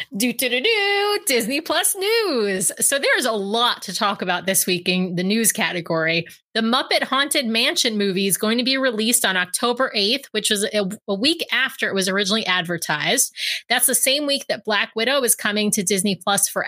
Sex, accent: female, American